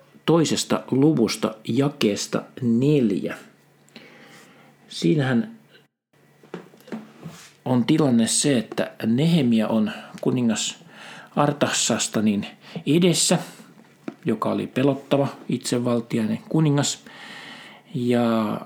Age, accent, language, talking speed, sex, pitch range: 50-69, native, Finnish, 65 wpm, male, 115-150 Hz